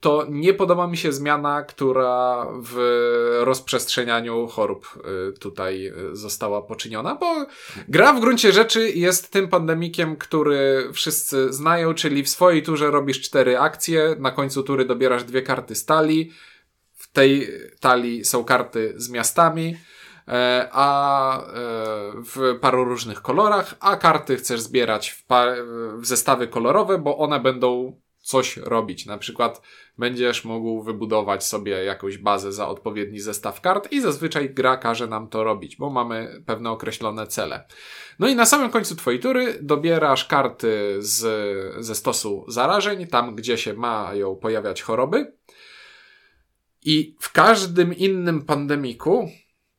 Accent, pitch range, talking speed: native, 115-160 Hz, 135 wpm